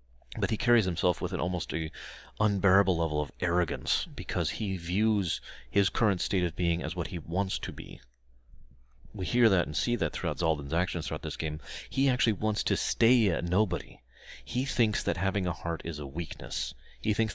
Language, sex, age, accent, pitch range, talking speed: English, male, 30-49, American, 75-100 Hz, 195 wpm